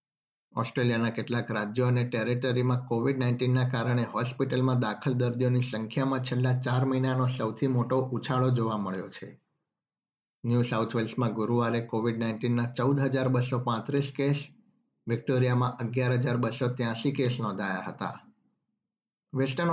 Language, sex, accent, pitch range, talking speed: Gujarati, male, native, 115-135 Hz, 105 wpm